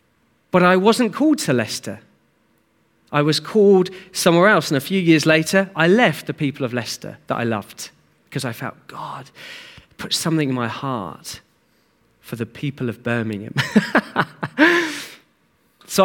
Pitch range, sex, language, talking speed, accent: 120-160 Hz, male, English, 150 wpm, British